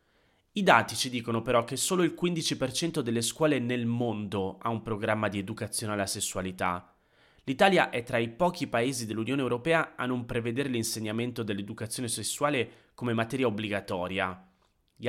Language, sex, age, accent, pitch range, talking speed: Italian, male, 30-49, native, 100-135 Hz, 150 wpm